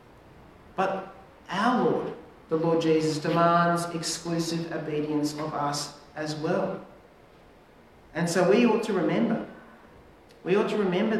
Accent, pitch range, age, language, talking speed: Australian, 155-190 Hz, 40-59, English, 125 wpm